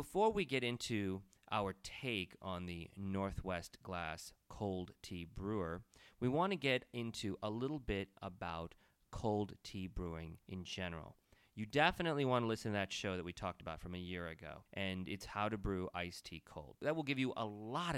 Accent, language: American, English